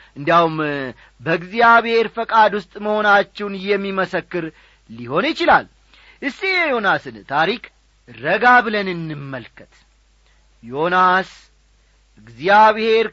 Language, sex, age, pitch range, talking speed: Amharic, male, 40-59, 170-250 Hz, 75 wpm